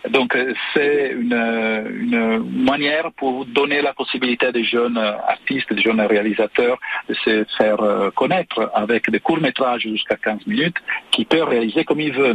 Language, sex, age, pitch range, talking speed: French, male, 50-69, 115-150 Hz, 155 wpm